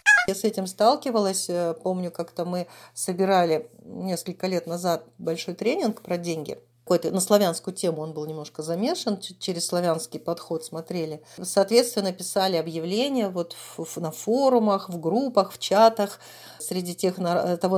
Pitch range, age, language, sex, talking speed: 170-220 Hz, 40-59, Russian, female, 145 wpm